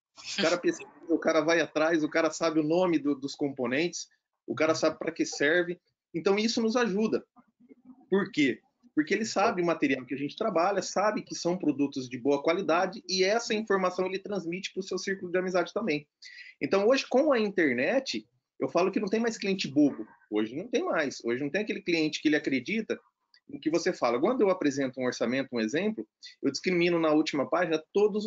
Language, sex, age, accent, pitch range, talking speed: Portuguese, male, 30-49, Brazilian, 160-220 Hz, 200 wpm